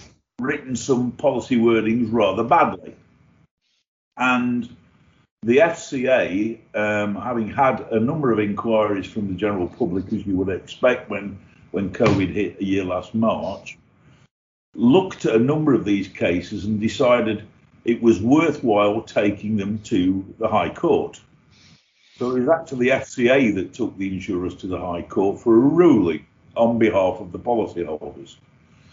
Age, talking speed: 50-69, 145 wpm